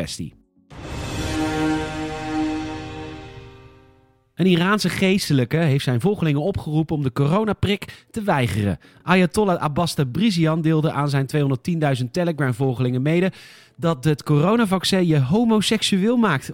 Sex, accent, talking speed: male, Dutch, 100 wpm